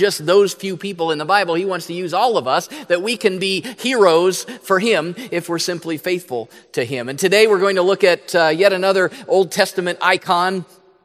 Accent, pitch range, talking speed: American, 150-215 Hz, 215 wpm